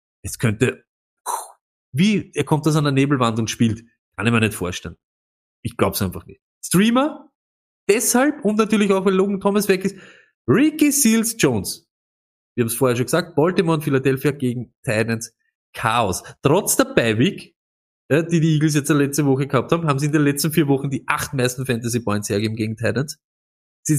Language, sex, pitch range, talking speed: German, male, 120-170 Hz, 180 wpm